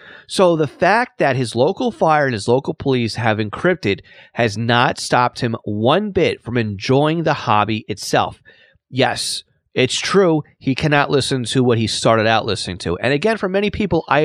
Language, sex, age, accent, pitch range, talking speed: English, male, 30-49, American, 110-145 Hz, 180 wpm